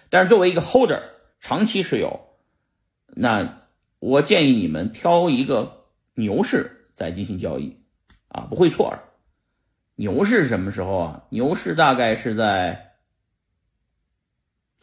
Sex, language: male, Chinese